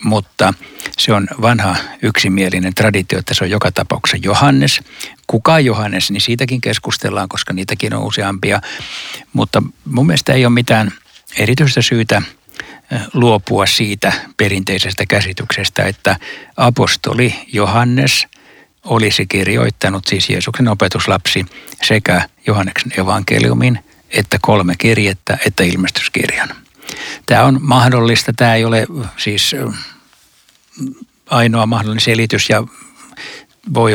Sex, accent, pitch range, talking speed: male, native, 100-120 Hz, 110 wpm